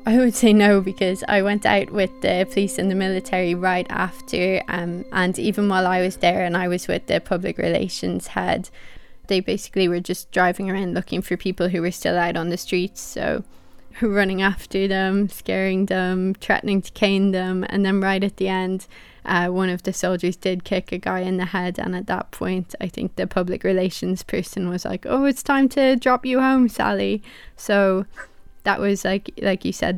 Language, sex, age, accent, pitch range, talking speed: English, female, 20-39, British, 185-235 Hz, 205 wpm